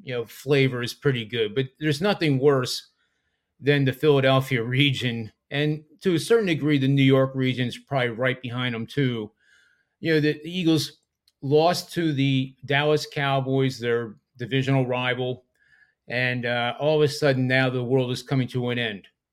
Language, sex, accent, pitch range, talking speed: English, male, American, 125-145 Hz, 170 wpm